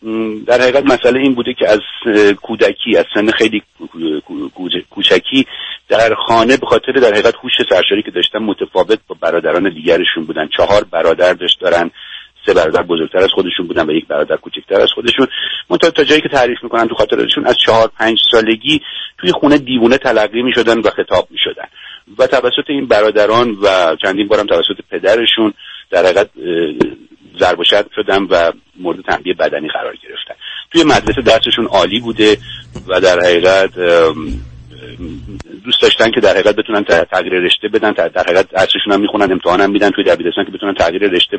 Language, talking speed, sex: Persian, 155 wpm, male